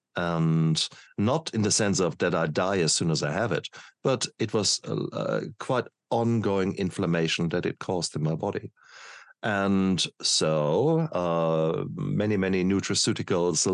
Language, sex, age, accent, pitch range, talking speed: English, male, 50-69, German, 85-110 Hz, 145 wpm